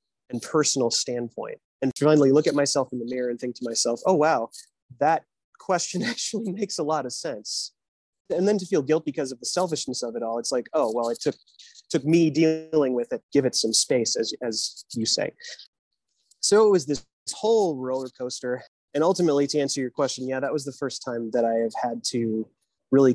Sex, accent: male, American